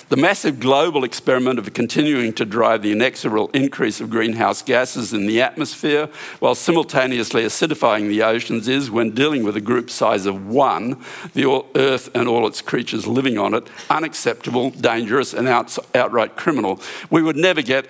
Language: English